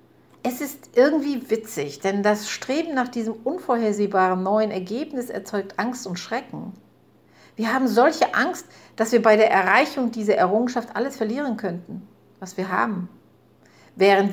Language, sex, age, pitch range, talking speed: German, female, 50-69, 180-230 Hz, 140 wpm